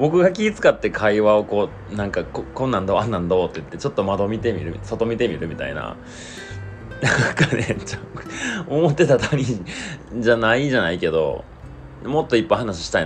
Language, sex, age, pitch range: Japanese, male, 30-49, 85-110 Hz